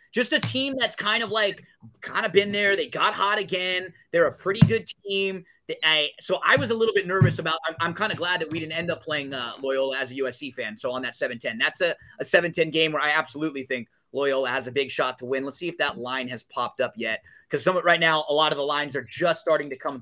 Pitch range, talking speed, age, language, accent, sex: 150-195 Hz, 260 wpm, 30-49, English, American, male